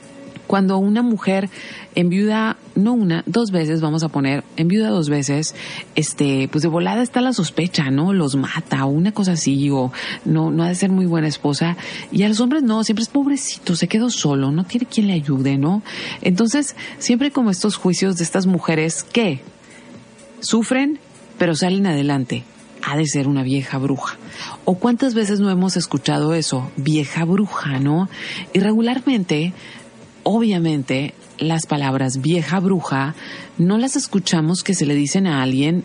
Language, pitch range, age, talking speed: Spanish, 150-205 Hz, 40-59, 165 wpm